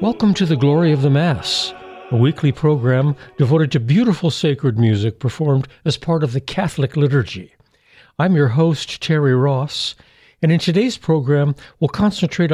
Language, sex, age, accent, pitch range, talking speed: English, male, 60-79, American, 125-160 Hz, 160 wpm